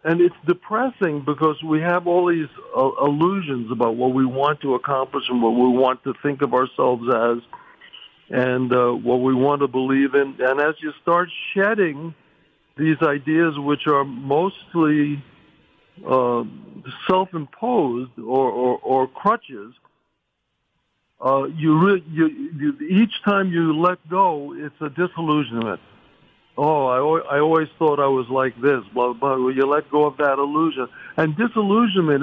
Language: English